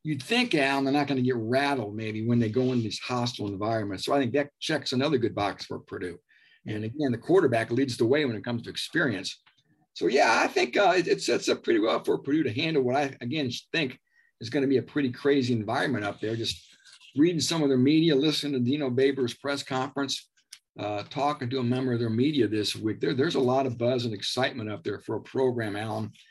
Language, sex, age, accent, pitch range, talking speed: English, male, 50-69, American, 115-145 Hz, 235 wpm